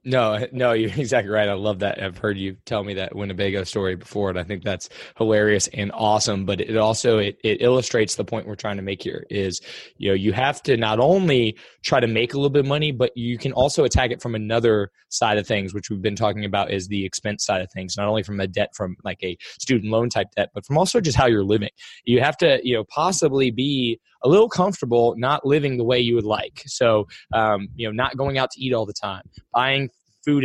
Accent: American